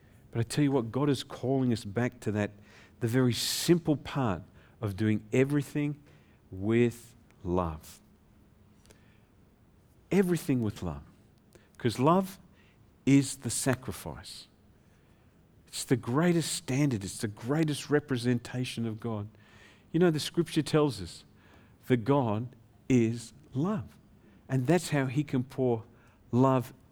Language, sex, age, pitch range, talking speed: English, male, 50-69, 100-130 Hz, 125 wpm